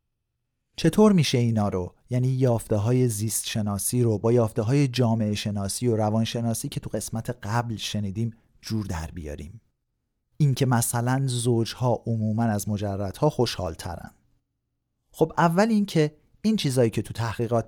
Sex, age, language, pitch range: male, 40-59, Persian, 105-135 Hz